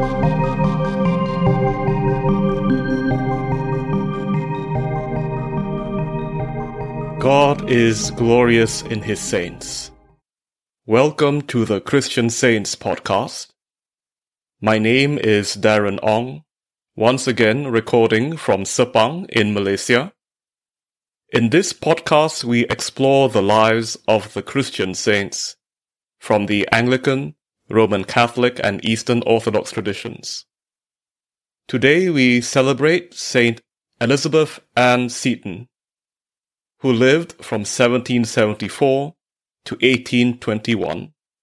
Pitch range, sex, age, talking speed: 110-140 Hz, male, 30-49, 85 wpm